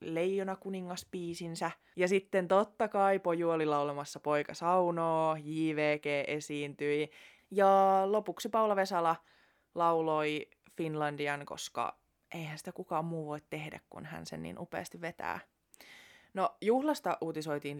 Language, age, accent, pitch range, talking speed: Finnish, 20-39, native, 160-200 Hz, 115 wpm